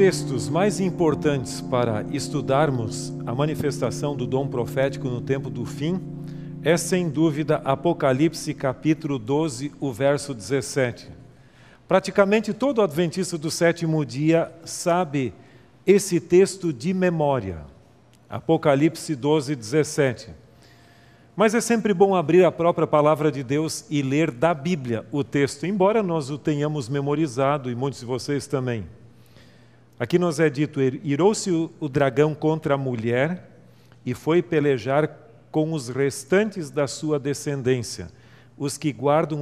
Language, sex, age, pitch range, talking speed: Portuguese, male, 50-69, 130-170 Hz, 130 wpm